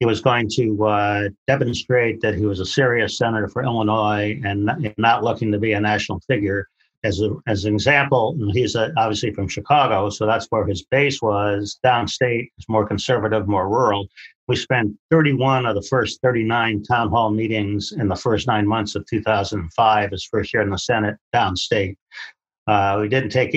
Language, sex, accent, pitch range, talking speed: English, male, American, 105-115 Hz, 180 wpm